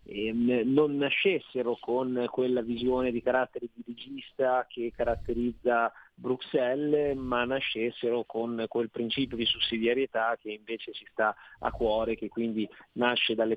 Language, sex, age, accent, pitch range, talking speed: Italian, male, 30-49, native, 110-130 Hz, 125 wpm